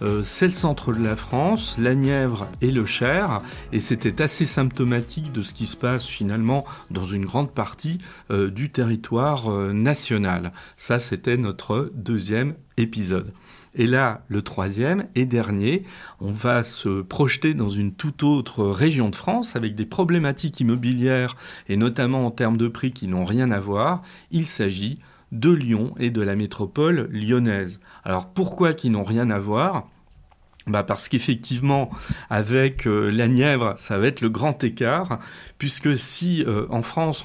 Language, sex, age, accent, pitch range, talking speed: French, male, 40-59, French, 105-135 Hz, 165 wpm